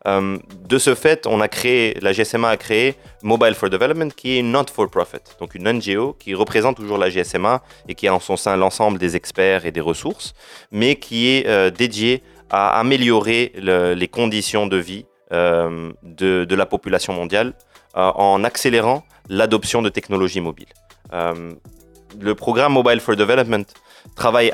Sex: male